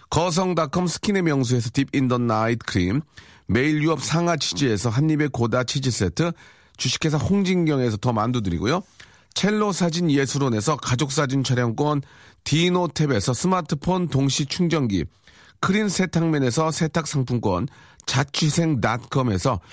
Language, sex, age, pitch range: Korean, male, 40-59, 120-165 Hz